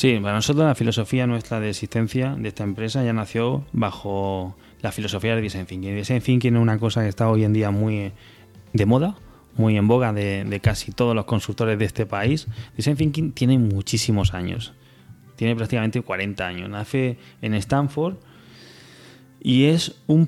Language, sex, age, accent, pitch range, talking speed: Spanish, male, 20-39, Spanish, 105-125 Hz, 175 wpm